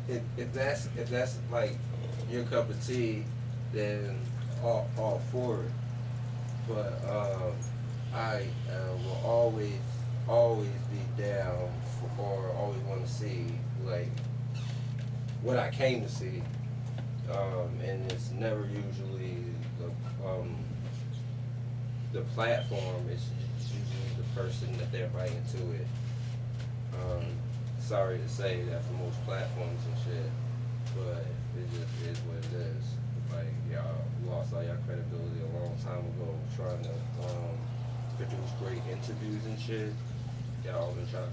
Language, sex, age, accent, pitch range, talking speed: English, male, 20-39, American, 120-125 Hz, 135 wpm